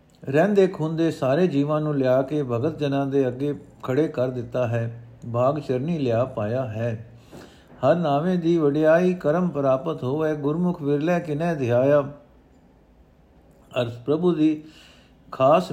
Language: Punjabi